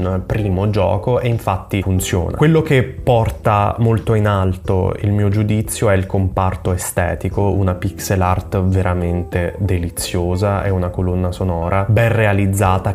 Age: 20-39